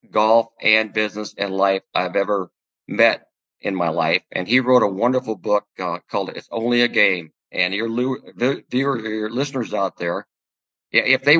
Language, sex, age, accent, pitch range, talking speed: English, male, 50-69, American, 105-130 Hz, 175 wpm